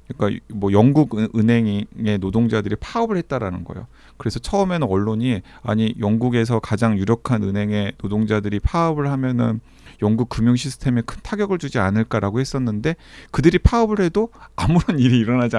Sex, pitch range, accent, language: male, 105-145 Hz, native, Korean